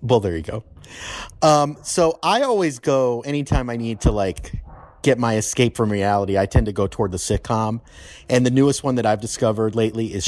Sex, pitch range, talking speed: male, 100-125 Hz, 205 wpm